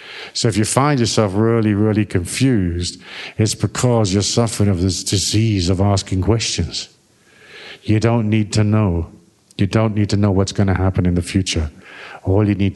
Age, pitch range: 50-69, 90-105 Hz